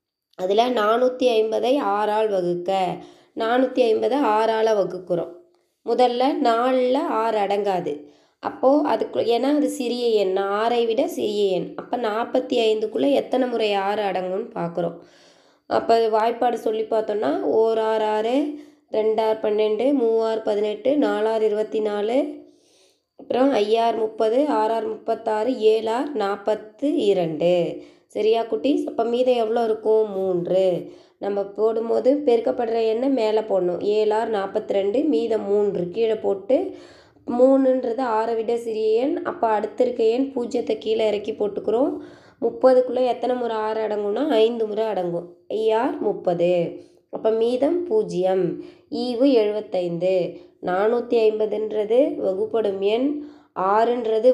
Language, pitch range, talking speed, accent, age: Tamil, 210-245 Hz, 115 wpm, native, 20-39